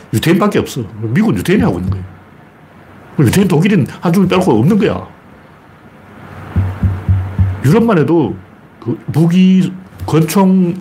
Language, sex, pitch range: Korean, male, 105-170 Hz